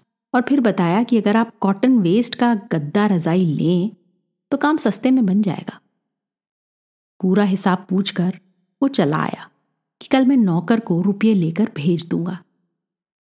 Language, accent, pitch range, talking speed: Hindi, native, 175-215 Hz, 150 wpm